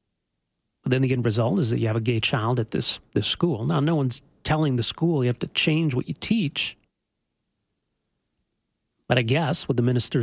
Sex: male